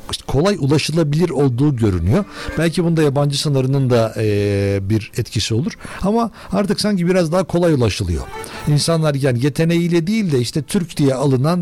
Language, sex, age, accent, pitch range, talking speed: Turkish, male, 60-79, native, 125-170 Hz, 150 wpm